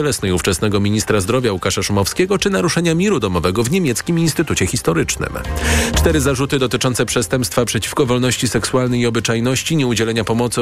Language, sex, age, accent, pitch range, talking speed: Polish, male, 40-59, native, 95-135 Hz, 135 wpm